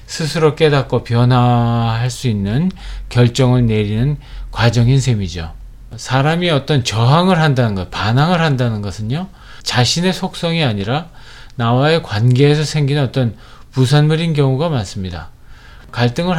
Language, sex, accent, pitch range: Korean, male, native, 120-150 Hz